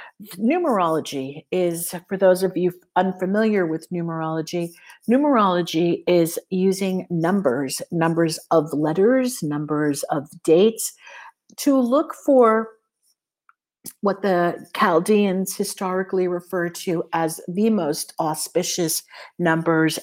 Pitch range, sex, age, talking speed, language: 160-200 Hz, female, 50-69, 100 wpm, English